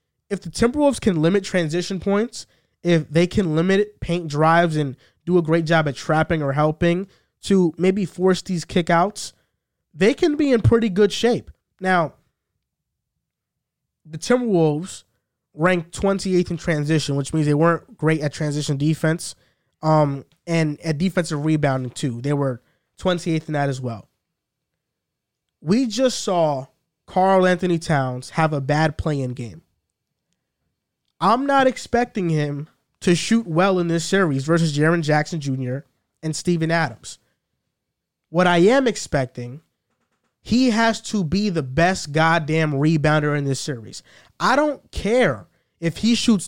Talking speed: 145 wpm